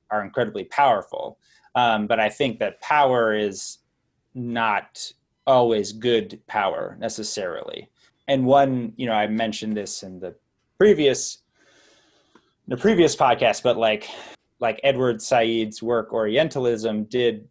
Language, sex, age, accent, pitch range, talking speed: English, male, 20-39, American, 105-125 Hz, 125 wpm